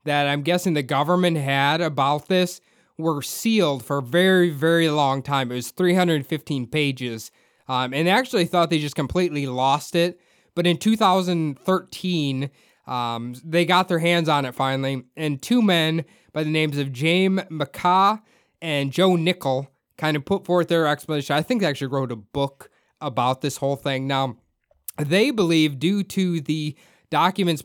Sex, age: male, 20-39